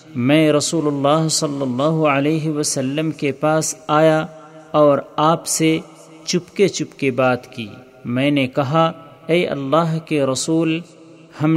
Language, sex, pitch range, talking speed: Urdu, male, 140-155 Hz, 140 wpm